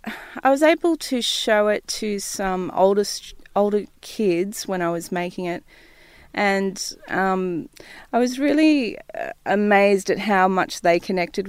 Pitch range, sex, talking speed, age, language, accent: 170-205 Hz, female, 140 wpm, 30-49, English, Australian